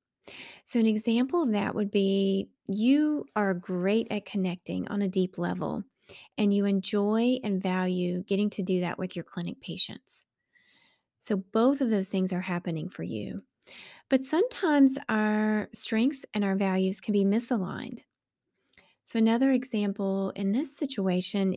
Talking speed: 150 wpm